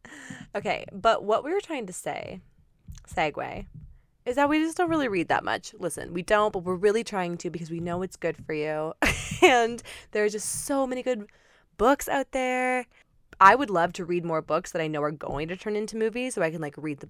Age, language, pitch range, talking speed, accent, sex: 20-39, English, 150-205 Hz, 230 wpm, American, female